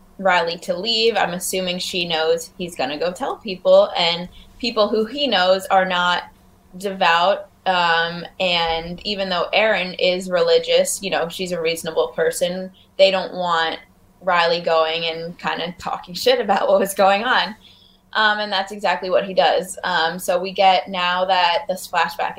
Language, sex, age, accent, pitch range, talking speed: English, female, 20-39, American, 170-200 Hz, 170 wpm